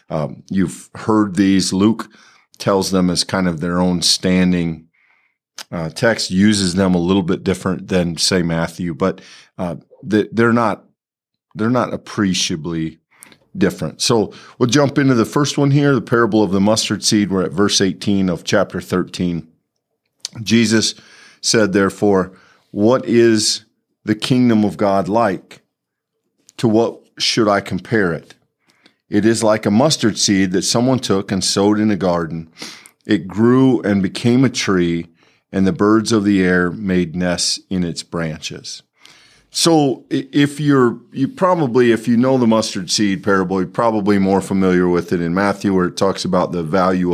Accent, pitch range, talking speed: American, 95-110 Hz, 160 wpm